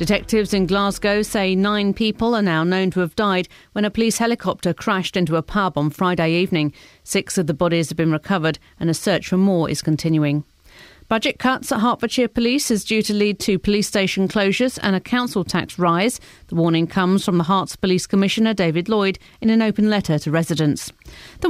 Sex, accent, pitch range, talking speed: female, British, 170-225 Hz, 200 wpm